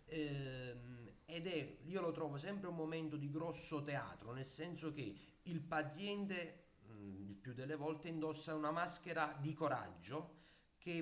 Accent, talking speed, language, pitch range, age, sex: native, 135 wpm, Italian, 140-175 Hz, 30-49, male